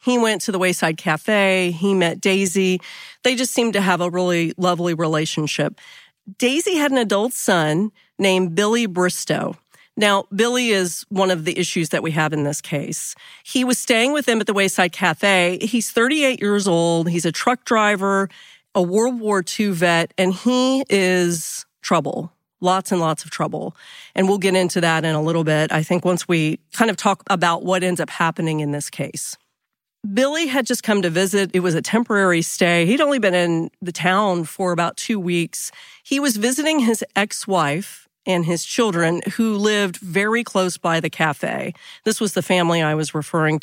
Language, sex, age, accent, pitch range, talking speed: English, female, 40-59, American, 170-215 Hz, 190 wpm